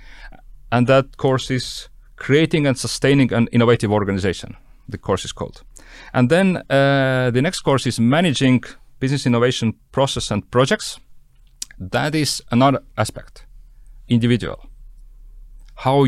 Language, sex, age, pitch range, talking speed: English, male, 40-59, 115-140 Hz, 125 wpm